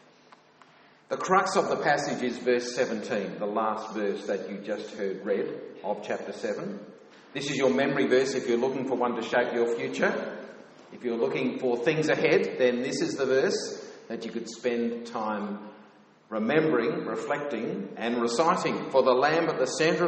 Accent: Australian